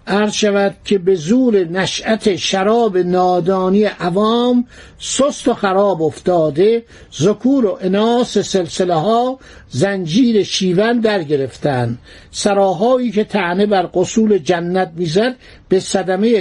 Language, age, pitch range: Persian, 60-79, 180-225 Hz